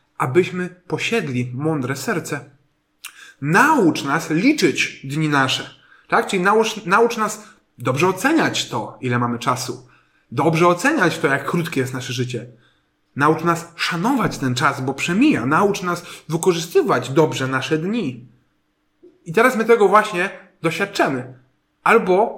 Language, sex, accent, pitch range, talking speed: Polish, male, native, 140-180 Hz, 130 wpm